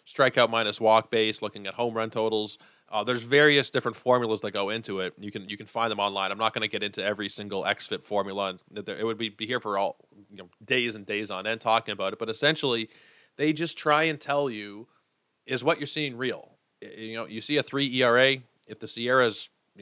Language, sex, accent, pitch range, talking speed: English, male, American, 105-120 Hz, 240 wpm